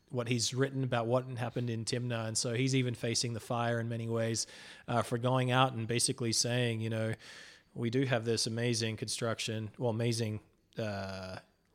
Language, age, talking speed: English, 30-49, 185 wpm